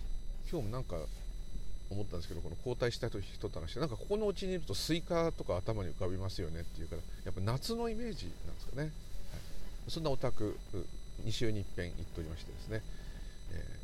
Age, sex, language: 50-69, male, Japanese